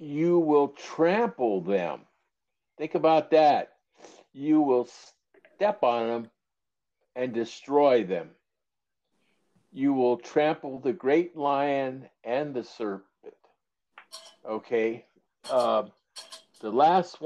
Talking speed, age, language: 95 wpm, 60-79, English